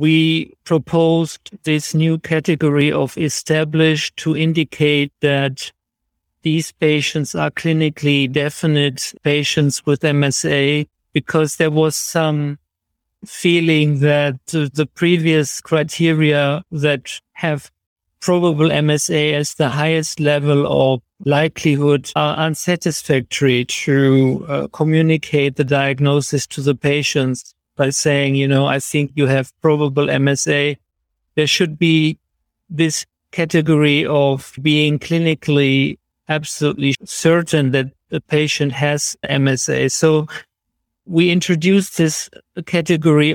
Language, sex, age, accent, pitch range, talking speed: English, male, 50-69, German, 140-160 Hz, 105 wpm